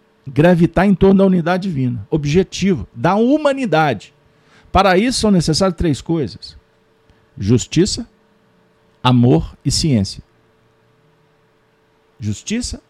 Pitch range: 120-195 Hz